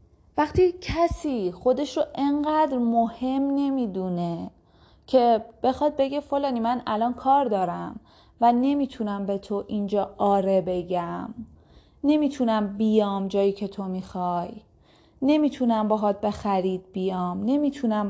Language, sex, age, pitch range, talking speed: Persian, female, 30-49, 195-260 Hz, 110 wpm